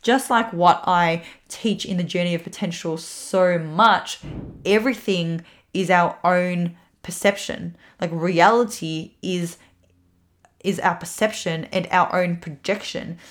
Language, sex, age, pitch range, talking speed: English, female, 20-39, 170-200 Hz, 120 wpm